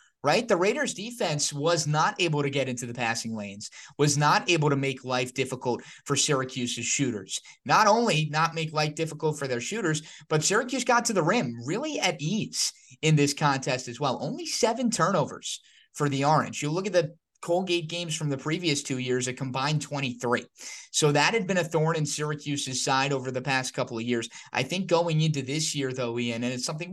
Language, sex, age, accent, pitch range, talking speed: English, male, 20-39, American, 130-160 Hz, 205 wpm